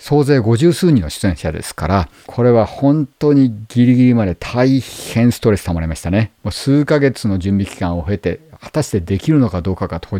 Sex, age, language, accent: male, 50-69, Japanese, native